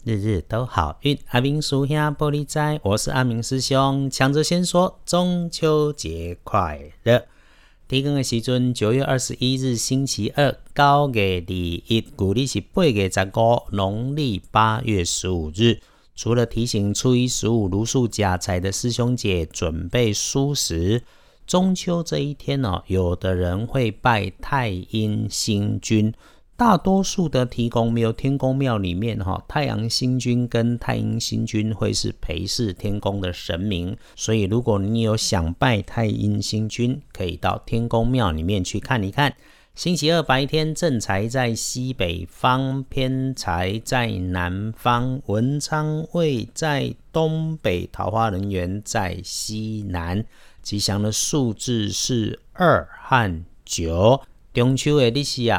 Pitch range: 100-135 Hz